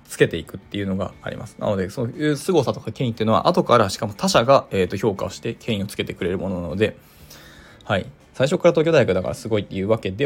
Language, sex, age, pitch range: Japanese, male, 20-39, 95-120 Hz